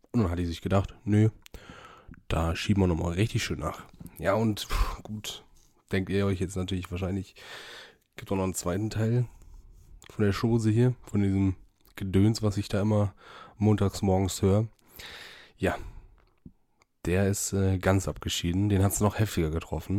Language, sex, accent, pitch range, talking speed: German, male, German, 90-105 Hz, 170 wpm